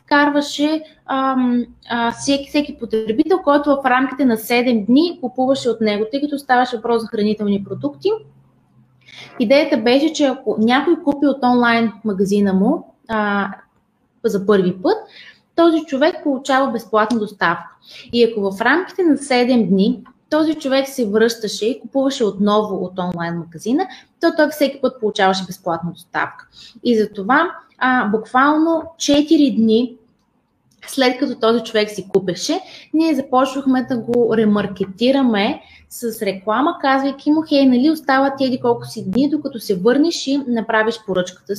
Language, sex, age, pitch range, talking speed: Bulgarian, female, 20-39, 215-280 Hz, 145 wpm